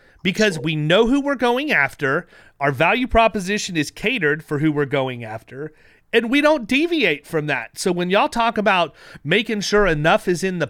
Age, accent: 30-49, American